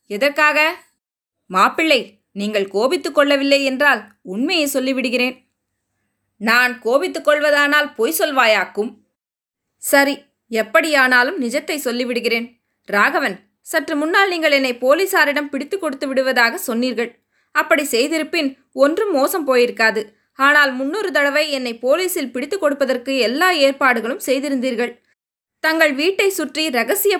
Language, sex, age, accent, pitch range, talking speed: Tamil, female, 20-39, native, 240-310 Hz, 100 wpm